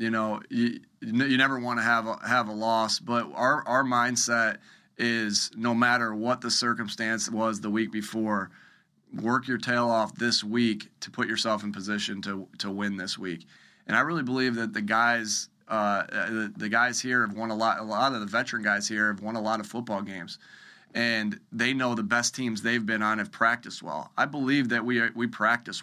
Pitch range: 105-120 Hz